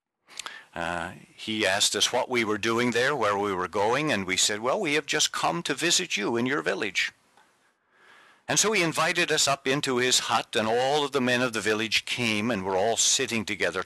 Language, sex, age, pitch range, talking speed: English, male, 50-69, 120-175 Hz, 215 wpm